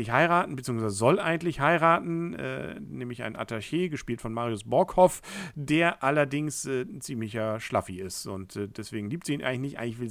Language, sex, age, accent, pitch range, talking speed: German, male, 50-69, German, 120-170 Hz, 180 wpm